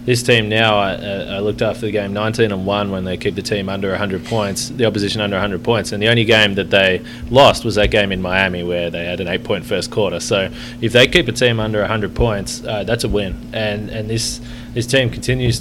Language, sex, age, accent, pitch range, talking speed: English, male, 20-39, Australian, 105-120 Hz, 260 wpm